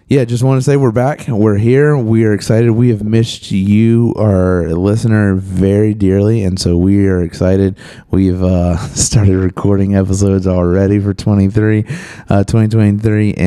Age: 30-49